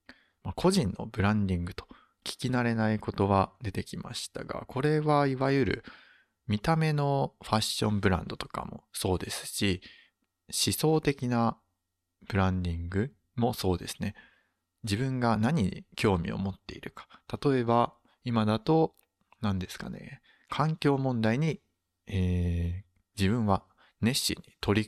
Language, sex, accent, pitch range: Japanese, male, native, 95-120 Hz